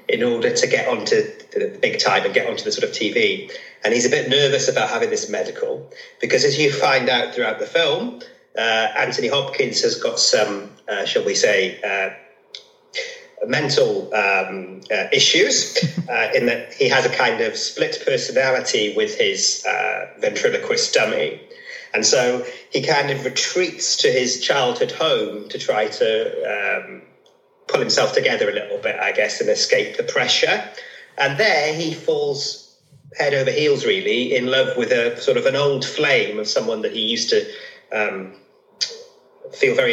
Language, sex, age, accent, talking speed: English, male, 30-49, British, 170 wpm